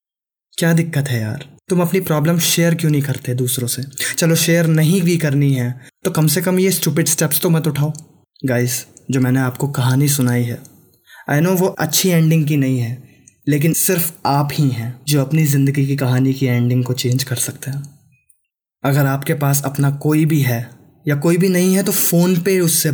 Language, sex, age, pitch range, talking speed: Hindi, male, 20-39, 130-160 Hz, 200 wpm